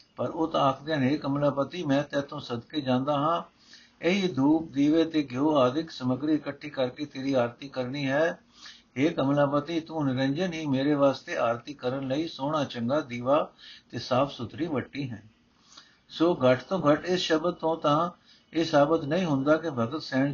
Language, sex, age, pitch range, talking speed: Punjabi, male, 60-79, 140-180 Hz, 160 wpm